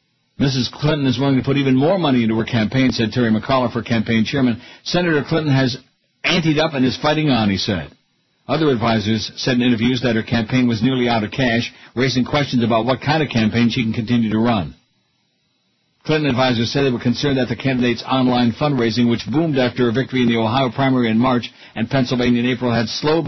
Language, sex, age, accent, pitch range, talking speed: English, male, 60-79, American, 115-135 Hz, 210 wpm